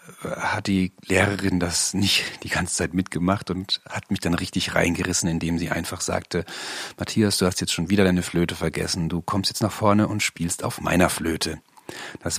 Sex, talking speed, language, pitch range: male, 190 wpm, German, 90-110 Hz